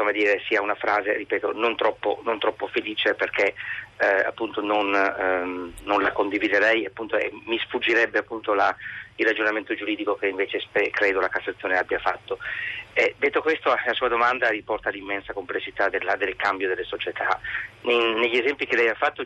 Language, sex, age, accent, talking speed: Italian, male, 30-49, native, 175 wpm